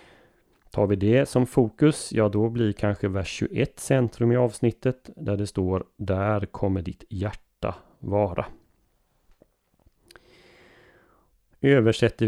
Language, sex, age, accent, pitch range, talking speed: Swedish, male, 30-49, native, 100-120 Hz, 110 wpm